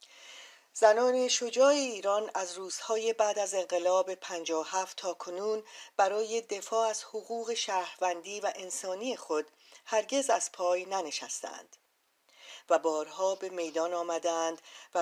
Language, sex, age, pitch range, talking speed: Persian, female, 40-59, 170-215 Hz, 120 wpm